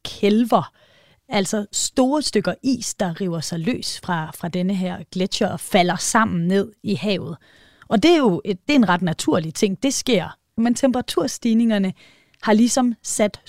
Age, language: 30-49, Danish